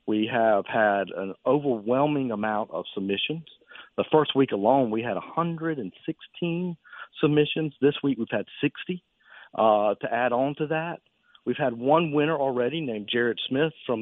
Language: English